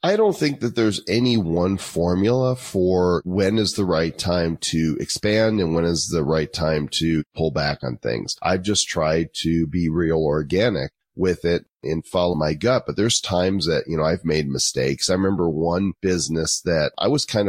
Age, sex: 40-59, male